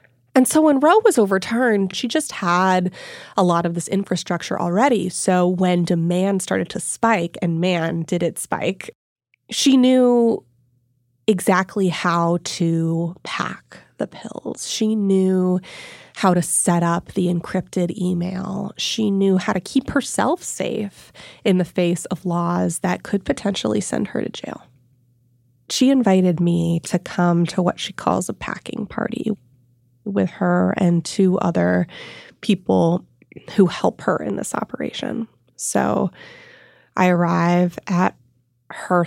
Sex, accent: female, American